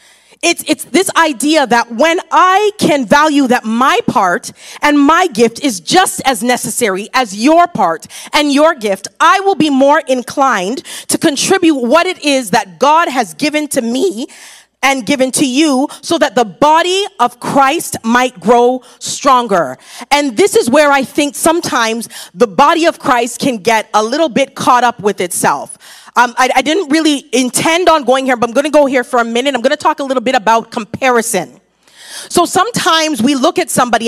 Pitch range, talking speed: 250-320 Hz, 190 wpm